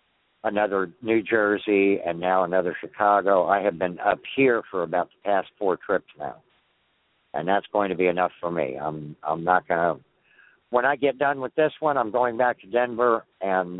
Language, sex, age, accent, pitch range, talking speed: English, male, 60-79, American, 95-130 Hz, 190 wpm